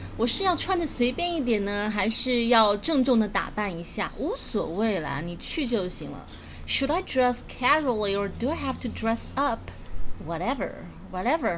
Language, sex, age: Chinese, female, 20-39